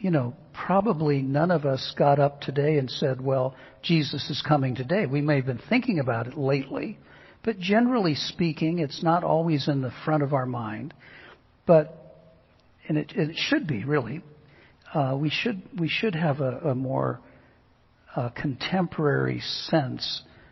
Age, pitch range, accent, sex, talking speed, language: 60-79, 130-155 Hz, American, male, 160 wpm, English